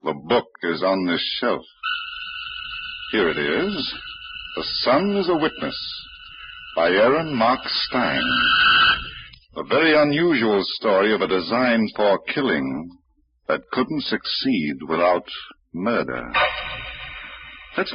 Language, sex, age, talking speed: English, male, 60-79, 110 wpm